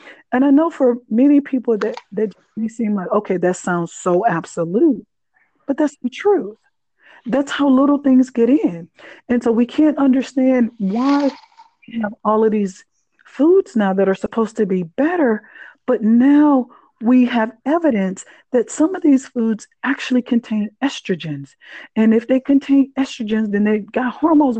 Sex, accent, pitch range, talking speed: female, American, 220-285 Hz, 160 wpm